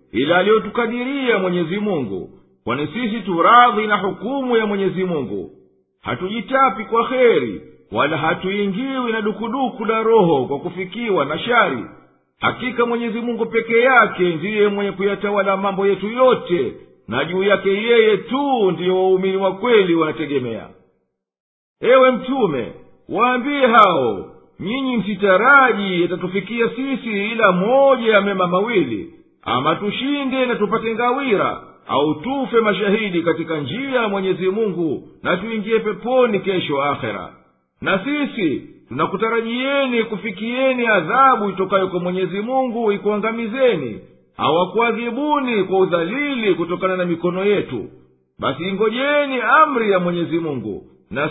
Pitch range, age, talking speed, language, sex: 180-245 Hz, 50-69, 120 wpm, Swahili, male